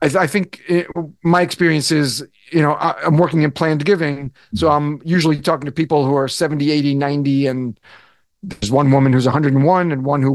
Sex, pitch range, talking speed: male, 140-205 Hz, 210 wpm